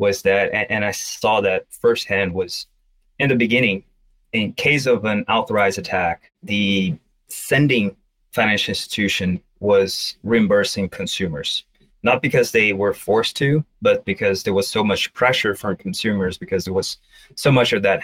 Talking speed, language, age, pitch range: 155 wpm, English, 30-49, 100-145 Hz